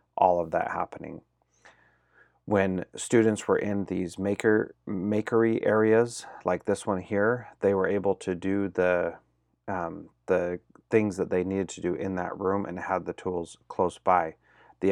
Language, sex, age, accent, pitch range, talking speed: English, male, 30-49, American, 90-100 Hz, 160 wpm